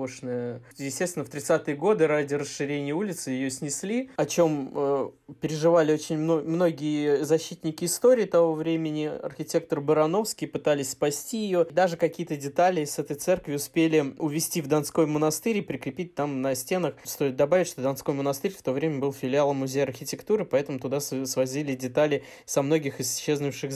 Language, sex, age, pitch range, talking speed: Russian, male, 20-39, 140-175 Hz, 155 wpm